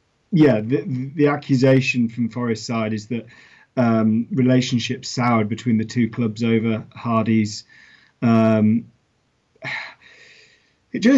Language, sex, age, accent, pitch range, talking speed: English, male, 40-59, British, 115-135 Hz, 100 wpm